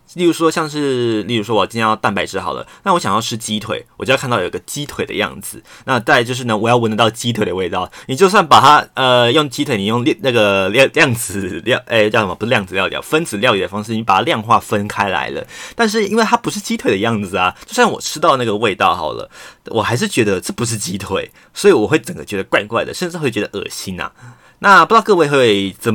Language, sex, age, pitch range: Chinese, male, 20-39, 100-130 Hz